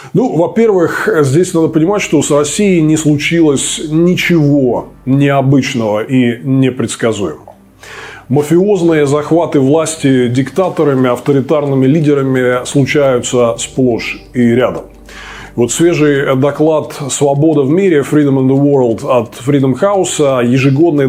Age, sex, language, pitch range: 20-39, male, Russian, 130-160 Hz